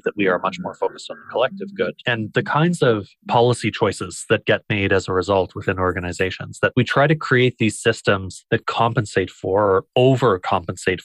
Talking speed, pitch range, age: 195 wpm, 105-130 Hz, 20-39